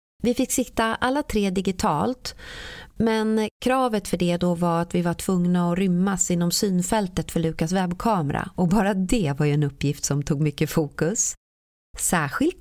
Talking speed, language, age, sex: 165 wpm, Swedish, 30-49, female